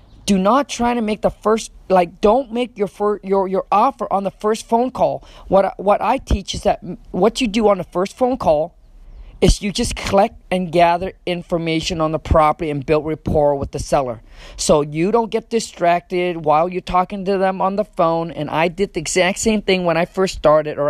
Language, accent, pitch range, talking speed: English, American, 155-210 Hz, 220 wpm